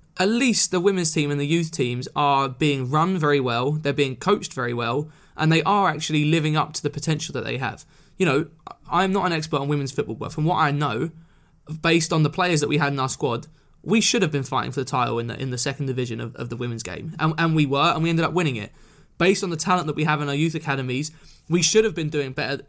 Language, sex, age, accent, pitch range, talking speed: English, male, 20-39, British, 140-170 Hz, 265 wpm